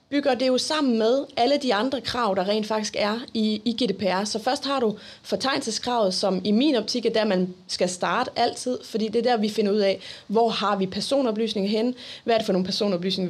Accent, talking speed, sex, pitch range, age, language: native, 220 wpm, female, 205-260 Hz, 30-49, Danish